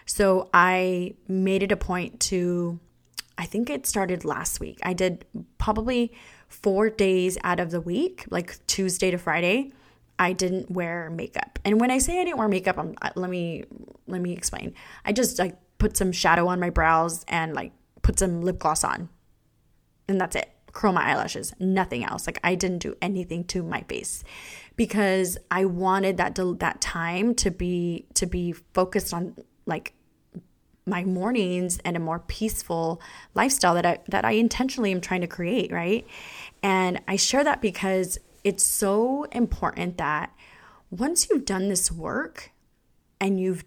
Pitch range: 175-200 Hz